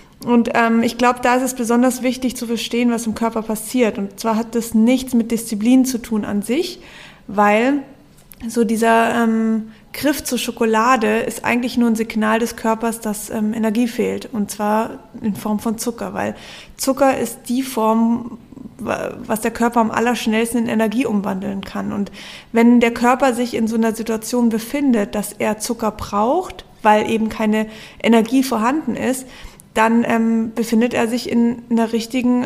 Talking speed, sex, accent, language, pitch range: 170 wpm, female, German, German, 220-250 Hz